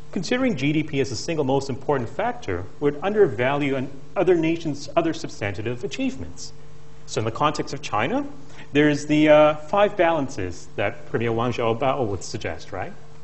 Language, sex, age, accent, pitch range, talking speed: English, male, 40-59, American, 120-160 Hz, 155 wpm